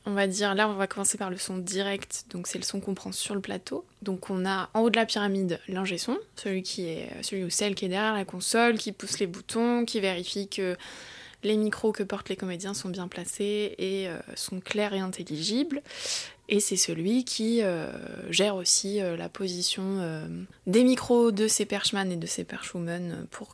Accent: French